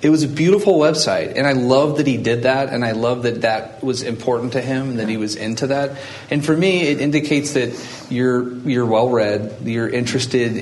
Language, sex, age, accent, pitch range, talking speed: English, male, 30-49, American, 110-130 Hz, 220 wpm